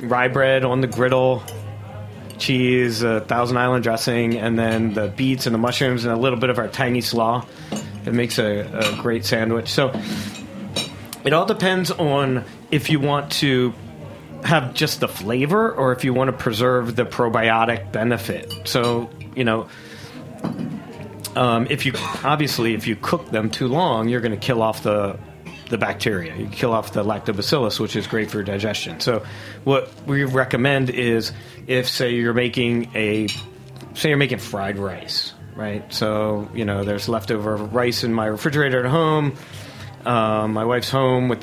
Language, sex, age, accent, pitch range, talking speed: English, male, 30-49, American, 110-130 Hz, 170 wpm